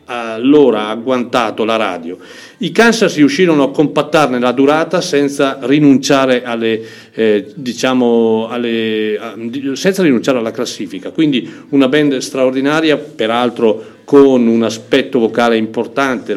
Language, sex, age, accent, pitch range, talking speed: Italian, male, 40-59, native, 115-145 Hz, 120 wpm